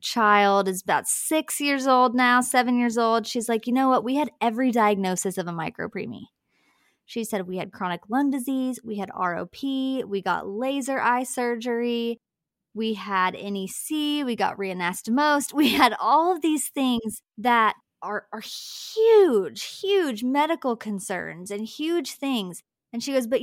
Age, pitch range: 20-39, 195-255 Hz